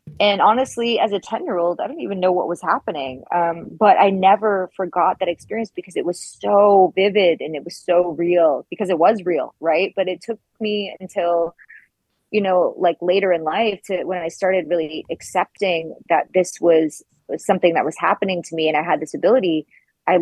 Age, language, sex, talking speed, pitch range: 20-39, English, female, 200 wpm, 165-190 Hz